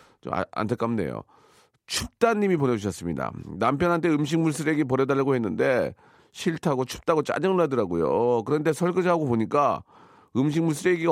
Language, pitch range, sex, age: Korean, 100-160 Hz, male, 40-59